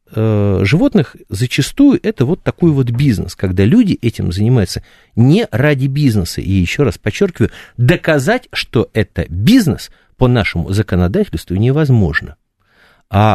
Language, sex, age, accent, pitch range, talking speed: Russian, male, 50-69, native, 95-130 Hz, 120 wpm